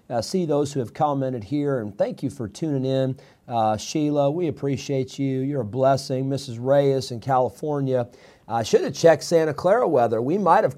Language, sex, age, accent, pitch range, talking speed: English, male, 40-59, American, 130-160 Hz, 195 wpm